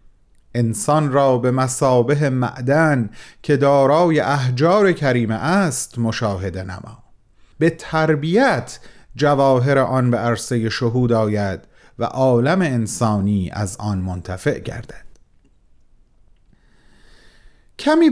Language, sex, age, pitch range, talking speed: Persian, male, 40-59, 120-185 Hz, 95 wpm